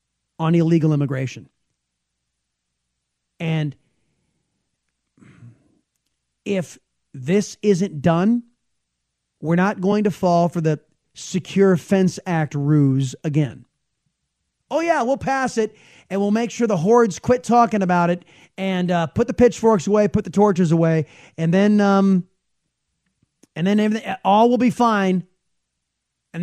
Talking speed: 125 wpm